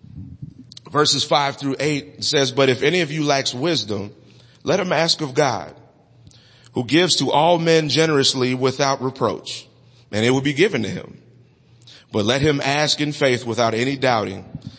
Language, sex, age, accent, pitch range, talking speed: English, male, 30-49, American, 115-145 Hz, 165 wpm